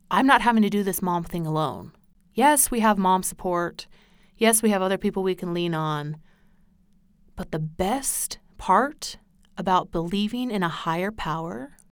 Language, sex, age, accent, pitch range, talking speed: English, female, 30-49, American, 180-210 Hz, 165 wpm